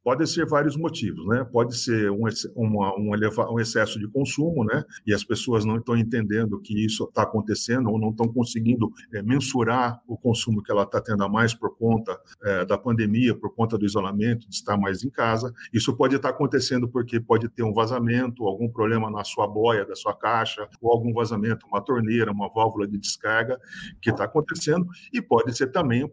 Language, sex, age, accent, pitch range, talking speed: Portuguese, male, 50-69, Brazilian, 110-125 Hz, 200 wpm